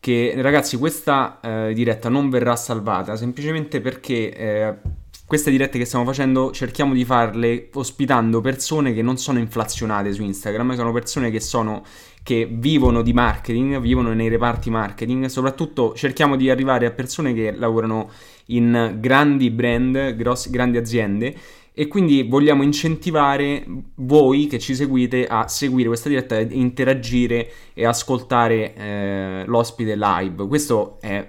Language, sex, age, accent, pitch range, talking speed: Italian, male, 20-39, native, 110-135 Hz, 145 wpm